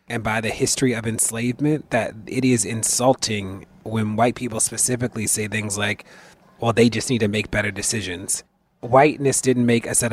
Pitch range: 105-120 Hz